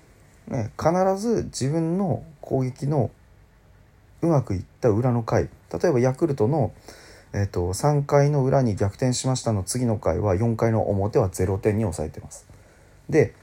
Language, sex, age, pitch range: Japanese, male, 30-49, 105-130 Hz